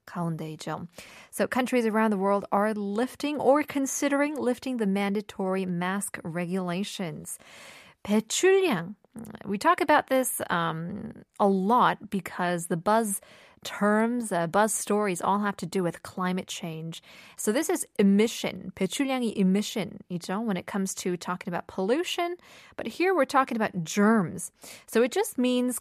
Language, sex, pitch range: Korean, female, 190-245 Hz